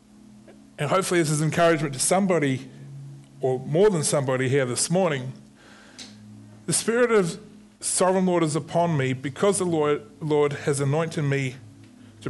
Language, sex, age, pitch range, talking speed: English, female, 30-49, 120-170 Hz, 150 wpm